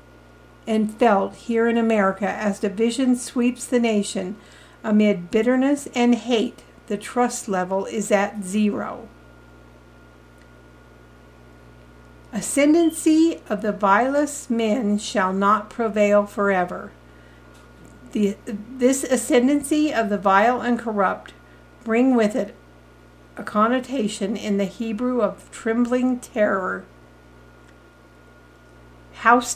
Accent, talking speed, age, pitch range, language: American, 100 wpm, 50-69, 190-235 Hz, English